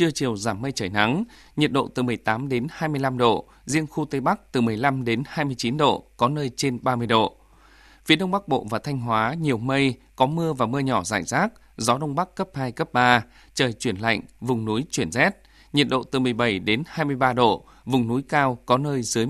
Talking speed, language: 220 wpm, Vietnamese